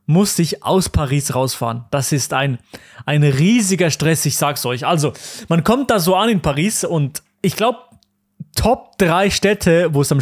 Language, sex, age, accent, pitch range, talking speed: German, male, 30-49, German, 140-205 Hz, 180 wpm